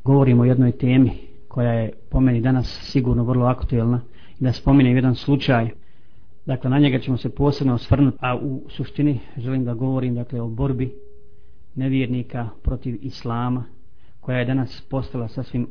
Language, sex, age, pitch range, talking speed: Croatian, male, 40-59, 120-140 Hz, 155 wpm